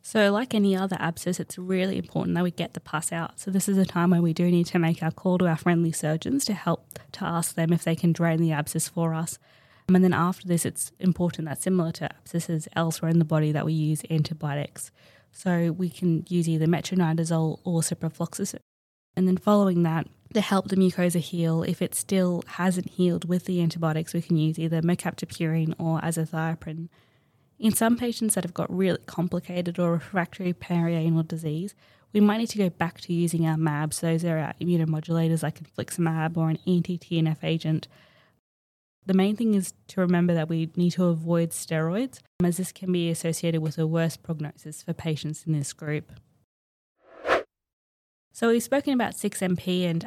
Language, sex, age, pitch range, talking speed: English, female, 20-39, 160-180 Hz, 190 wpm